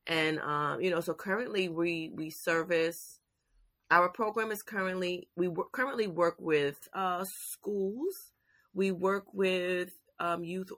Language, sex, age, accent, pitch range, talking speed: English, female, 30-49, American, 150-185 Hz, 135 wpm